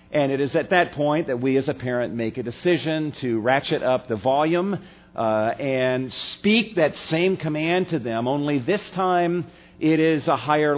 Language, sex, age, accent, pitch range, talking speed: English, male, 50-69, American, 110-150 Hz, 190 wpm